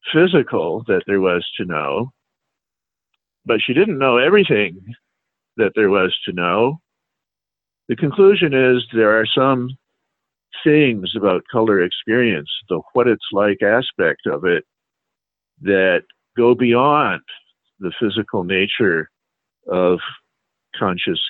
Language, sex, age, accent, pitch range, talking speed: English, male, 50-69, American, 95-120 Hz, 115 wpm